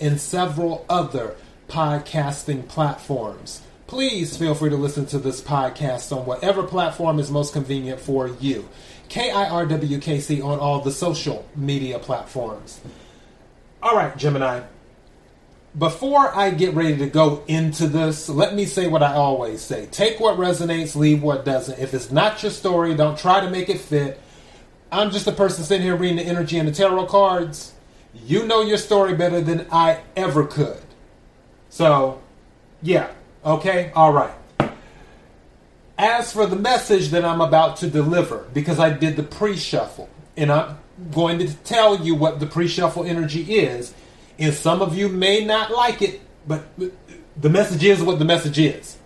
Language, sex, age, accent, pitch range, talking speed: English, male, 30-49, American, 145-185 Hz, 160 wpm